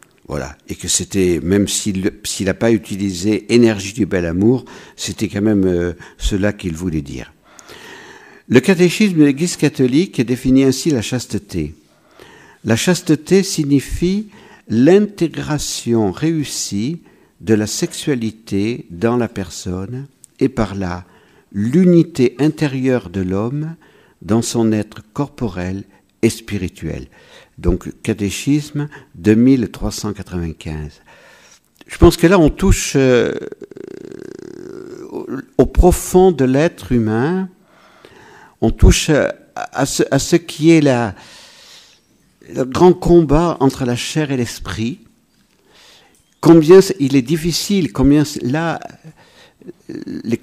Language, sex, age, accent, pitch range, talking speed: French, male, 60-79, French, 105-160 Hz, 110 wpm